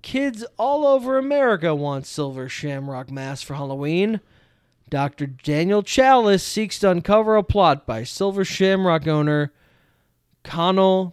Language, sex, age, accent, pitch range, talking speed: English, male, 20-39, American, 150-210 Hz, 125 wpm